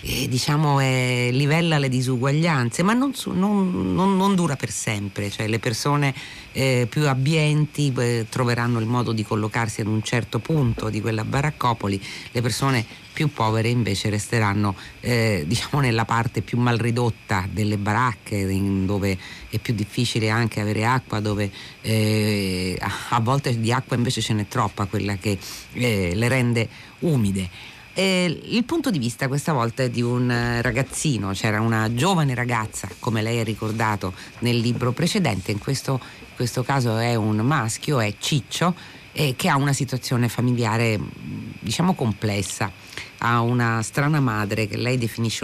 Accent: native